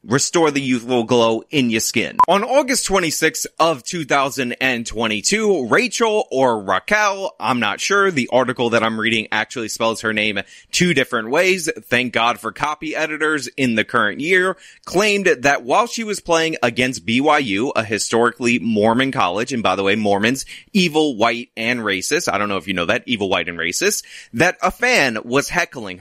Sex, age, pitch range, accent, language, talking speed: male, 30-49, 115-170 Hz, American, English, 175 wpm